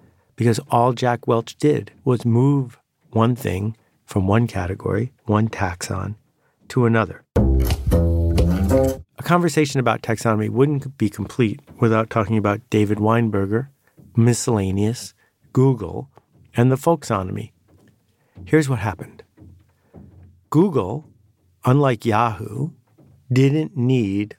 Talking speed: 100 wpm